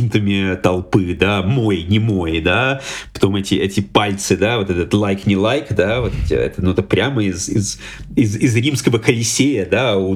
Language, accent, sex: Ukrainian, native, male